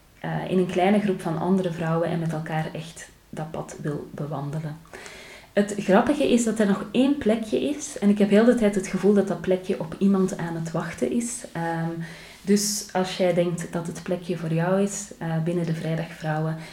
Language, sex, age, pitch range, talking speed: Dutch, female, 30-49, 165-205 Hz, 205 wpm